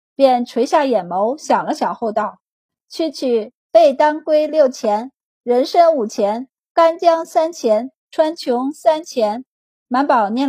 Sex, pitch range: female, 225-305 Hz